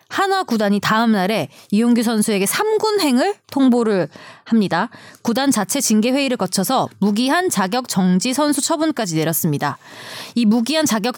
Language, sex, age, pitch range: Korean, female, 20-39, 200-280 Hz